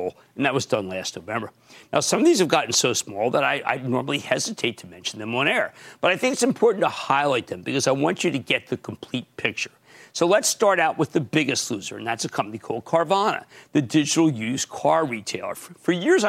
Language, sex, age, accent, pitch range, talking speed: English, male, 50-69, American, 130-180 Hz, 230 wpm